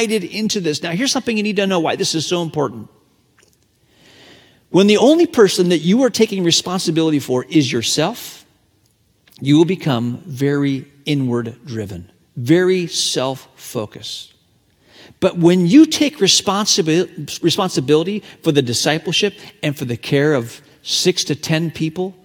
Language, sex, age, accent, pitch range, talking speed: English, male, 40-59, American, 130-185 Hz, 140 wpm